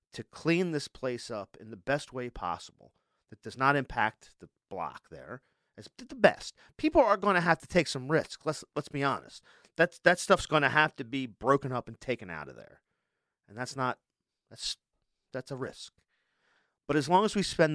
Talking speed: 205 wpm